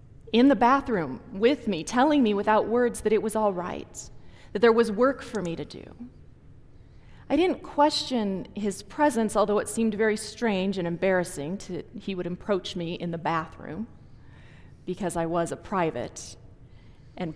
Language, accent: English, American